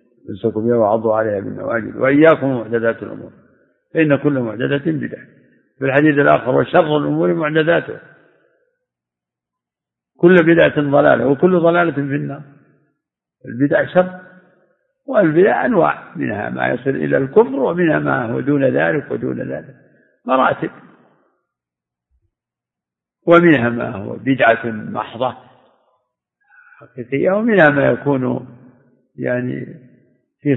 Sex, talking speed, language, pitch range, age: male, 105 wpm, Arabic, 120-155 Hz, 60-79